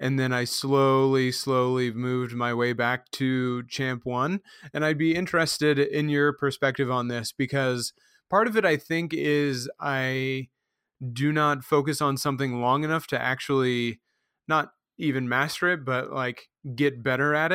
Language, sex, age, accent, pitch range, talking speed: English, male, 30-49, American, 125-145 Hz, 160 wpm